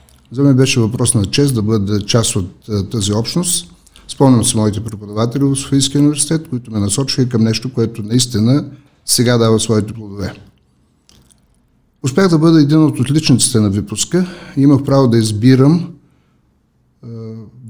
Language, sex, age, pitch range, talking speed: Bulgarian, male, 50-69, 105-140 Hz, 150 wpm